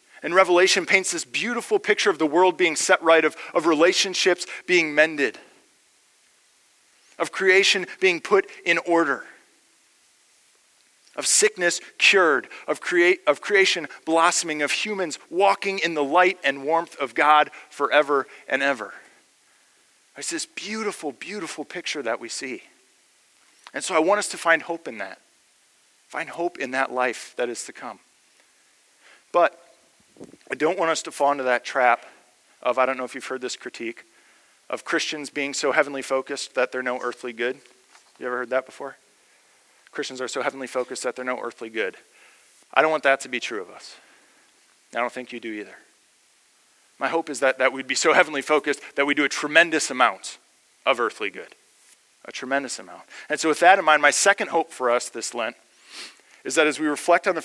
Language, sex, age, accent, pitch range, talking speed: English, male, 40-59, American, 135-180 Hz, 180 wpm